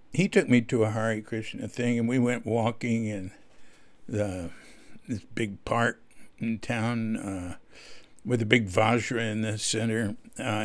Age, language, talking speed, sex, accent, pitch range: 60-79, English, 160 wpm, male, American, 110-140 Hz